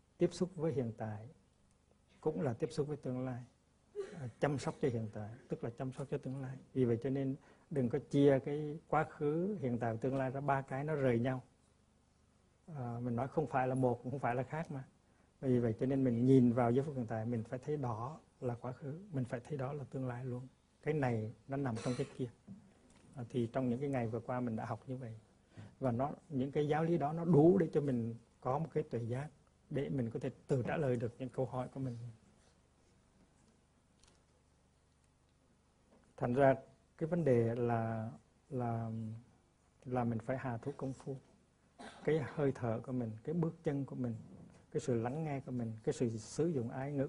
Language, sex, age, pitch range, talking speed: Vietnamese, male, 60-79, 115-140 Hz, 220 wpm